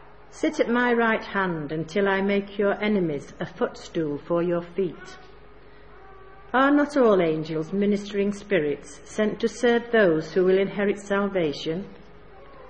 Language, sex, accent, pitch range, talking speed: English, female, British, 170-220 Hz, 135 wpm